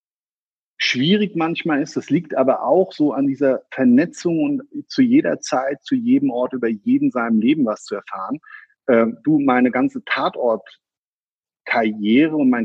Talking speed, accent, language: 150 wpm, German, German